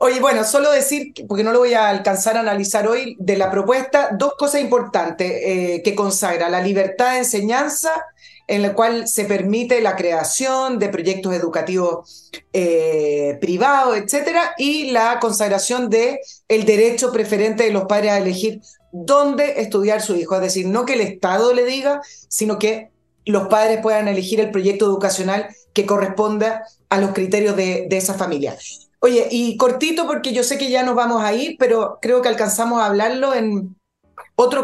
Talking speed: 175 wpm